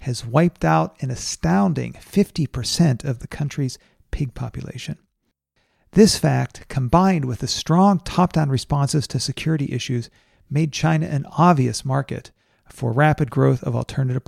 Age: 40-59